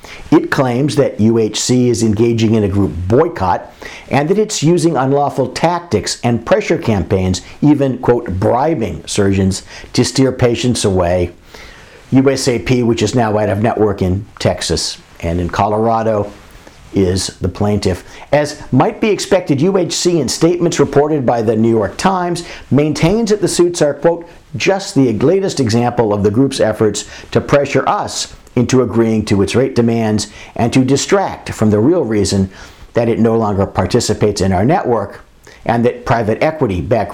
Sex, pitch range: male, 105-140 Hz